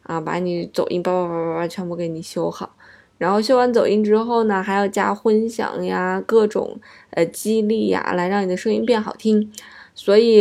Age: 20-39